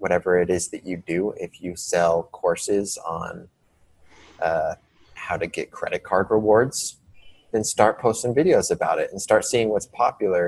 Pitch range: 90-115 Hz